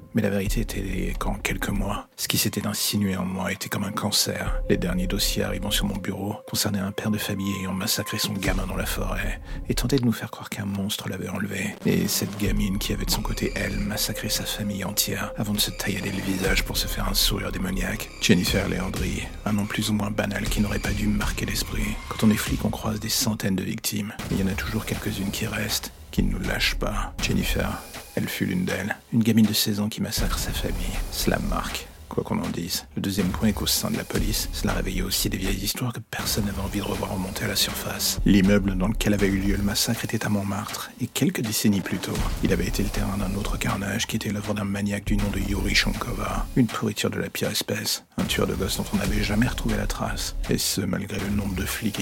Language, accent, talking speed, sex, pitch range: French, French, 245 wpm, male, 95-105 Hz